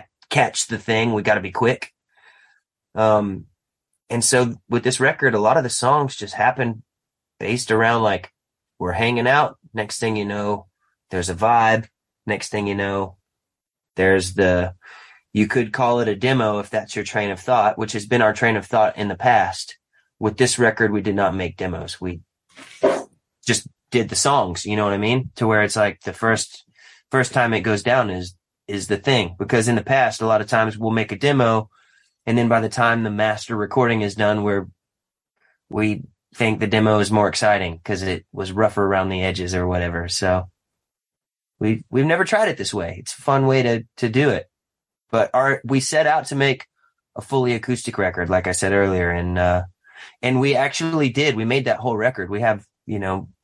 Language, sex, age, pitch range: English, male, 30-49, 100-120 Hz